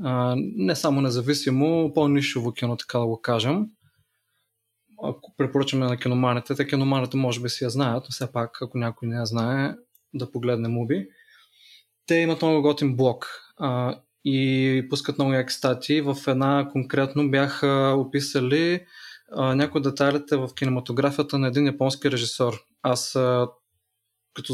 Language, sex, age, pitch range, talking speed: Bulgarian, male, 20-39, 120-150 Hz, 135 wpm